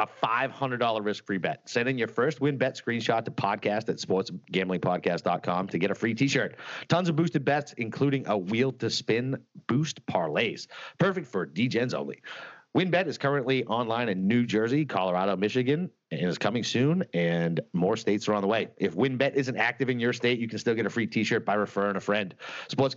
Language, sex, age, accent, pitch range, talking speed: English, male, 40-59, American, 100-135 Hz, 200 wpm